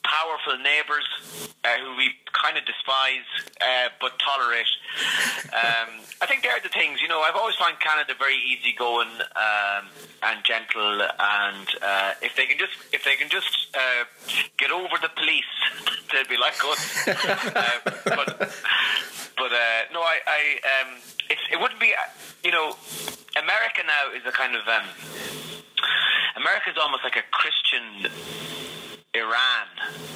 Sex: male